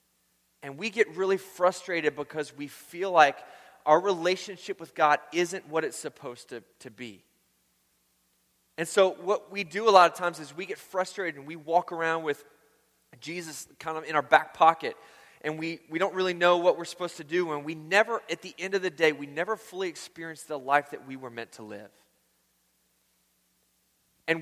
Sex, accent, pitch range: male, American, 115-180 Hz